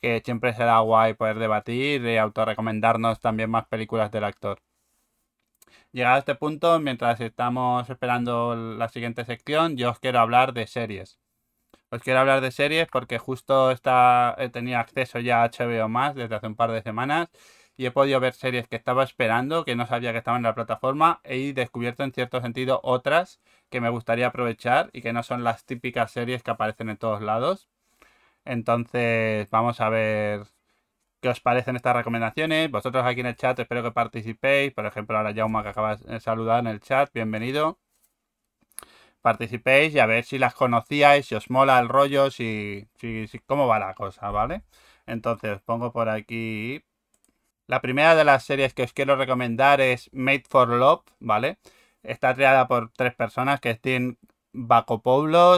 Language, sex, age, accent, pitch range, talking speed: Spanish, male, 20-39, Spanish, 115-130 Hz, 175 wpm